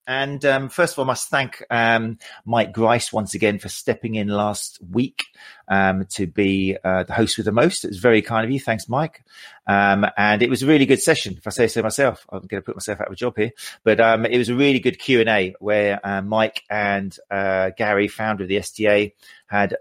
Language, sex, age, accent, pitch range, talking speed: English, male, 40-59, British, 100-115 Hz, 235 wpm